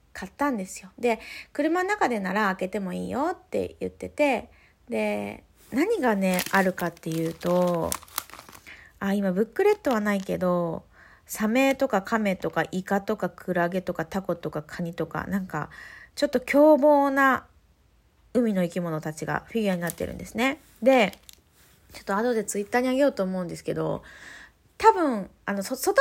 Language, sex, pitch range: Japanese, female, 185-295 Hz